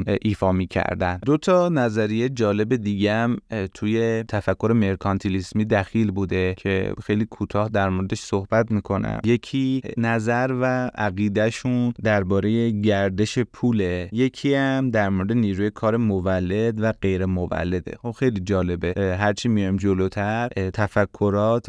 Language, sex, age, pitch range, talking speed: Persian, male, 30-49, 95-115 Hz, 120 wpm